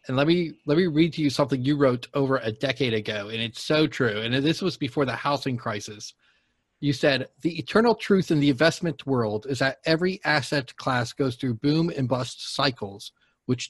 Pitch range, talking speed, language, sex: 120-150 Hz, 205 wpm, English, male